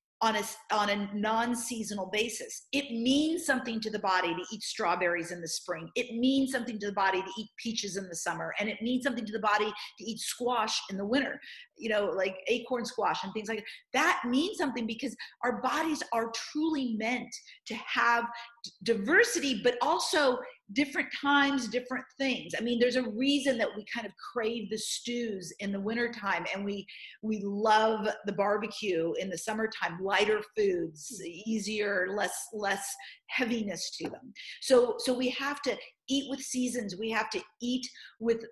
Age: 40-59